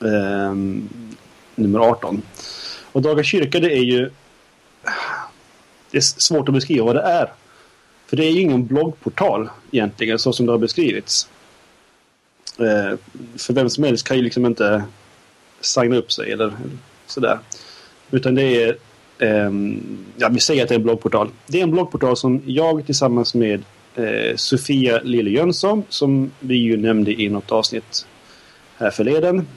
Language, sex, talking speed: Swedish, male, 150 wpm